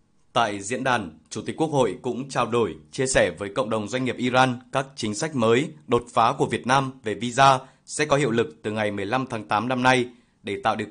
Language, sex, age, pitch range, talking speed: Vietnamese, male, 20-39, 115-130 Hz, 235 wpm